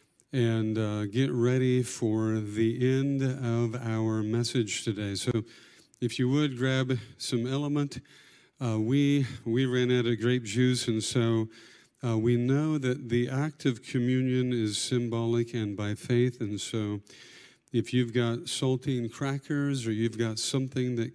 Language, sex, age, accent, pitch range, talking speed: English, male, 50-69, American, 110-125 Hz, 150 wpm